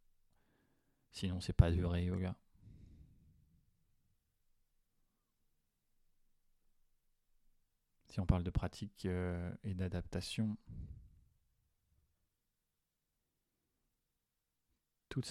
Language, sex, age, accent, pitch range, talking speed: French, male, 30-49, French, 85-100 Hz, 60 wpm